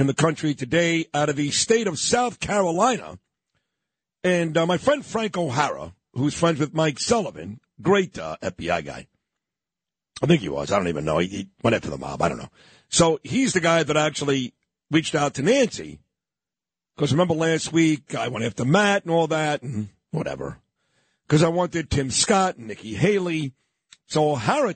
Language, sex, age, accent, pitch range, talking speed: English, male, 50-69, American, 145-185 Hz, 185 wpm